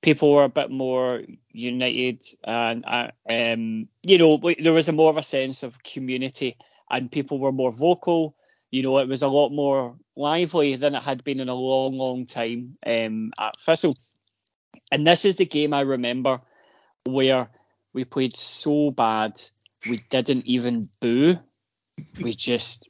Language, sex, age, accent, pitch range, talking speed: English, male, 20-39, British, 120-145 Hz, 165 wpm